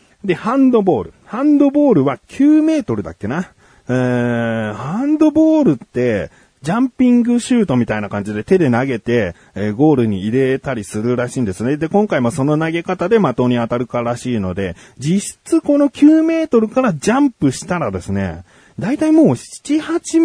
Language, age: Japanese, 40-59